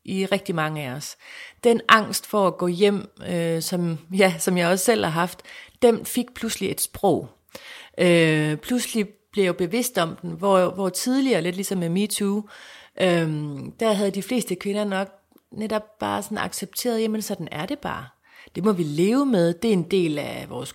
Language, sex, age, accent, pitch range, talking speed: Danish, female, 30-49, native, 165-210 Hz, 190 wpm